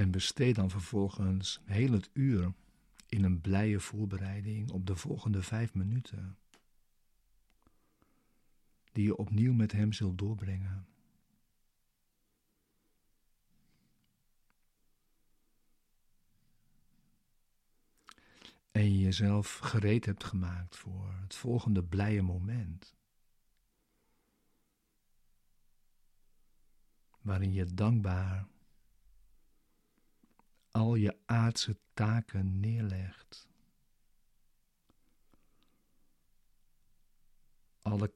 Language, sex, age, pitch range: Dutch, male, 50-69, 95-110 Hz